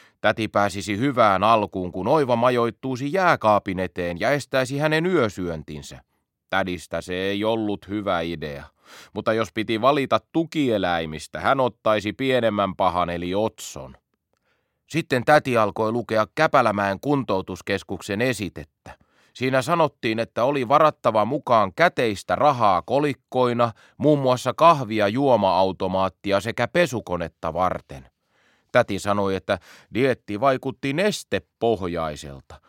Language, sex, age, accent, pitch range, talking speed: Finnish, male, 30-49, native, 95-140 Hz, 110 wpm